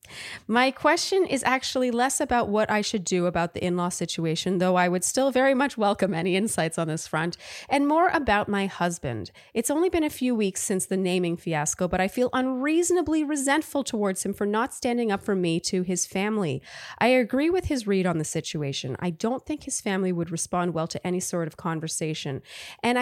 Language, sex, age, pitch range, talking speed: English, female, 30-49, 170-245 Hz, 205 wpm